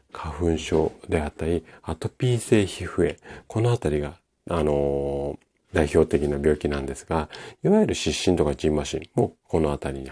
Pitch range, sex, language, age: 75-115 Hz, male, Japanese, 40-59